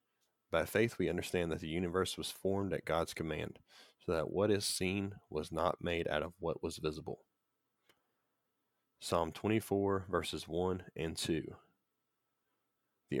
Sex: male